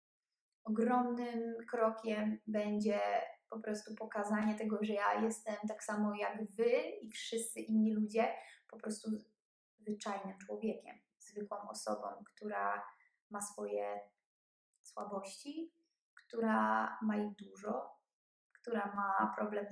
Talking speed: 105 wpm